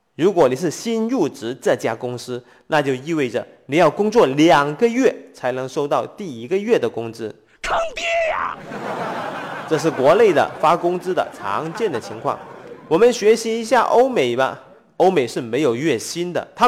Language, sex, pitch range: Chinese, male, 155-235 Hz